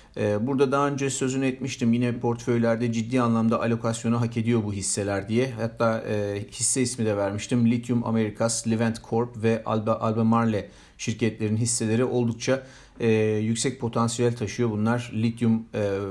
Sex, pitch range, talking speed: male, 115-130 Hz, 145 wpm